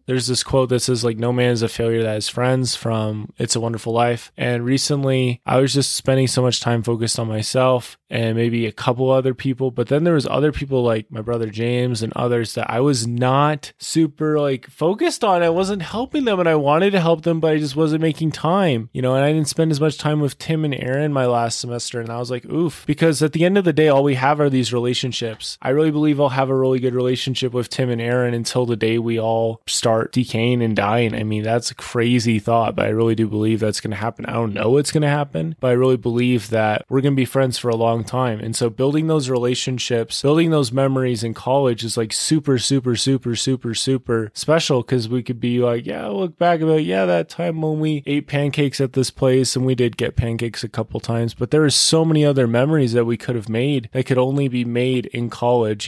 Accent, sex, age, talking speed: American, male, 20-39, 250 wpm